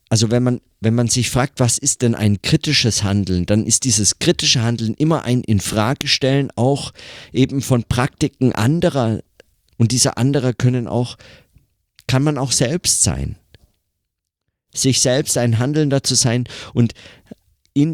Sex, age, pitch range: male, 50-69, 105-130 Hz